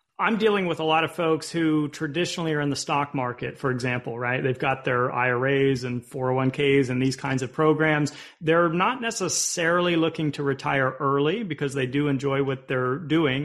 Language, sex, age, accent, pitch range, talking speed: English, male, 30-49, American, 135-165 Hz, 185 wpm